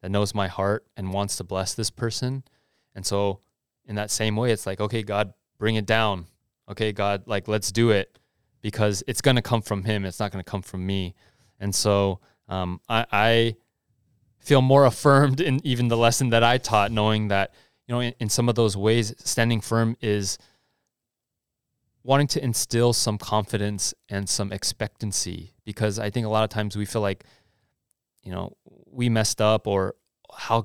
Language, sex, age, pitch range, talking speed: English, male, 20-39, 100-115 Hz, 190 wpm